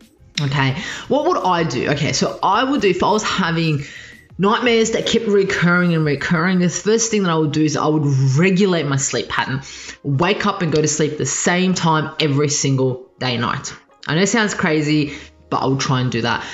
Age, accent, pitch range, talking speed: 20-39, Australian, 130-170 Hz, 220 wpm